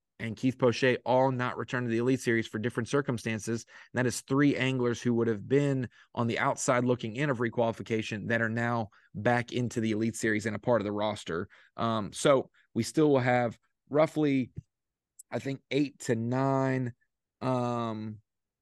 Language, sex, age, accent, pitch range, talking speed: English, male, 30-49, American, 115-130 Hz, 180 wpm